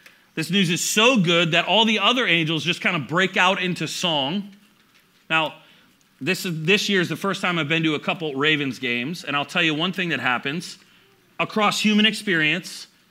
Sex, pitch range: male, 155-200 Hz